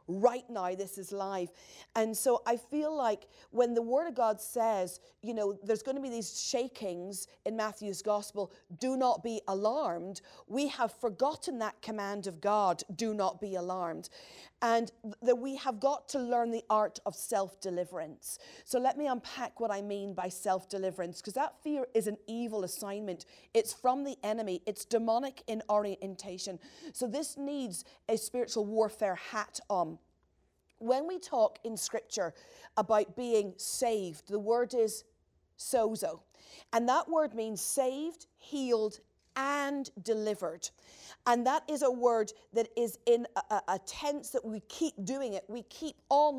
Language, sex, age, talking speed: English, female, 40-59, 160 wpm